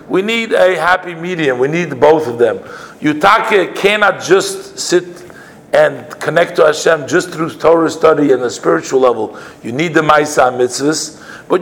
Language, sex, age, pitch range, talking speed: English, male, 50-69, 150-200 Hz, 165 wpm